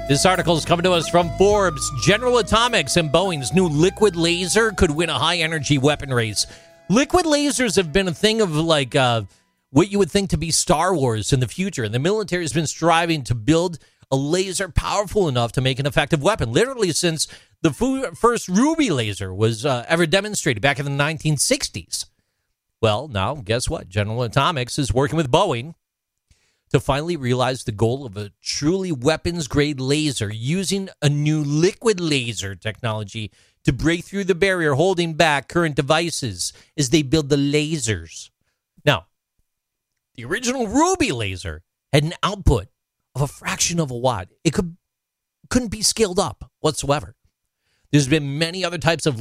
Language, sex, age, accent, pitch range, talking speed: English, male, 40-59, American, 125-175 Hz, 170 wpm